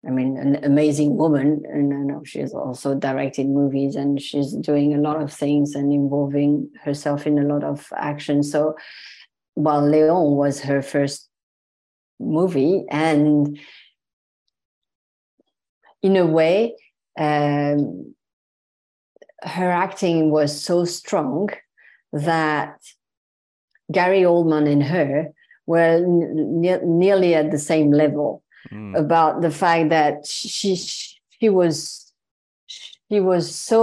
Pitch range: 145-170 Hz